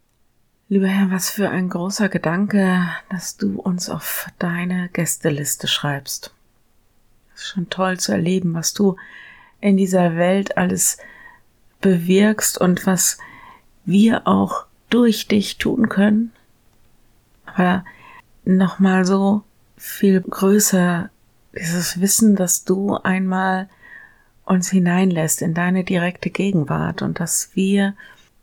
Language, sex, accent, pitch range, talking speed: German, female, German, 170-195 Hz, 115 wpm